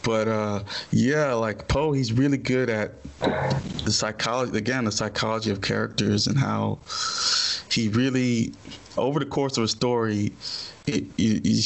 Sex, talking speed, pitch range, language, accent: male, 140 wpm, 105-125 Hz, English, American